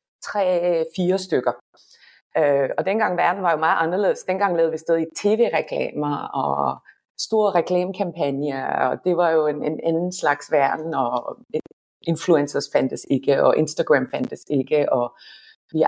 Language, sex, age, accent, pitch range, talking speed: Danish, female, 30-49, native, 140-190 Hz, 140 wpm